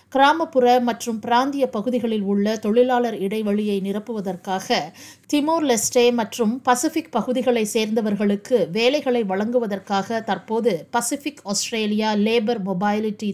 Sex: female